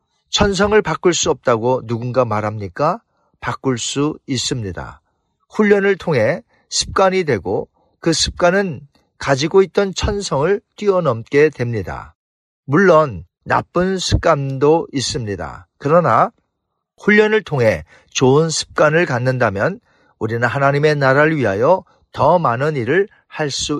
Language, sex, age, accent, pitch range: Korean, male, 40-59, native, 115-170 Hz